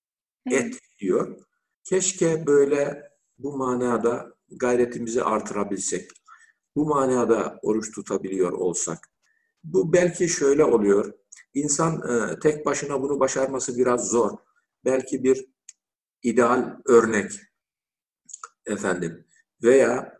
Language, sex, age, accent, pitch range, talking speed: Turkish, male, 50-69, native, 120-185 Hz, 90 wpm